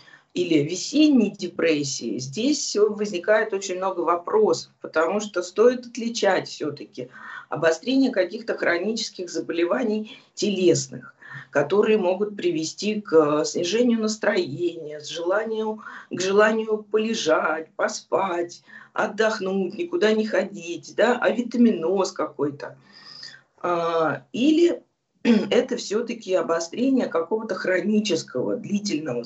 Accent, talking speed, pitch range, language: native, 90 wpm, 165-230 Hz, Russian